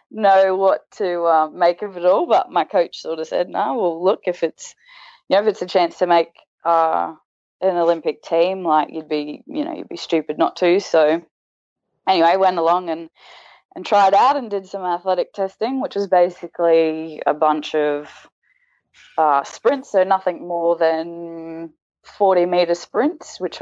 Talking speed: 180 wpm